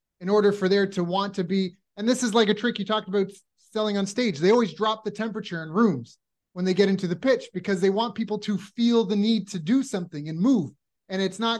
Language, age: English, 30-49